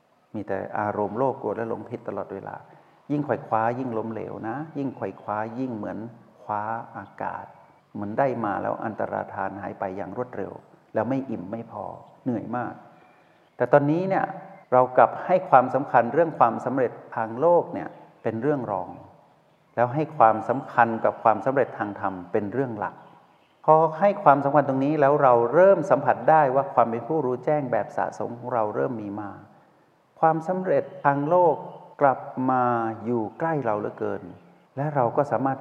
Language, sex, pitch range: Thai, male, 110-150 Hz